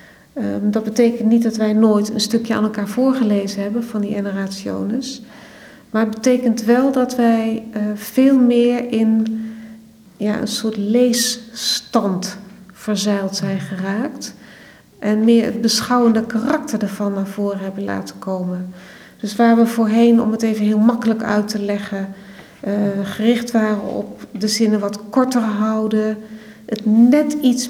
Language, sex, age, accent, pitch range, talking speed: Dutch, female, 40-59, Dutch, 205-245 Hz, 145 wpm